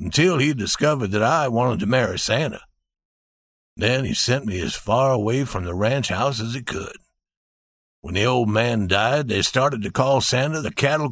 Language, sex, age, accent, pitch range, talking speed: English, male, 60-79, American, 105-155 Hz, 190 wpm